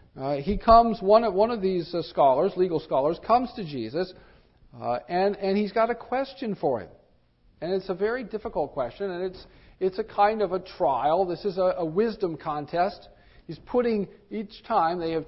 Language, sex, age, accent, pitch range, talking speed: English, male, 50-69, American, 150-210 Hz, 195 wpm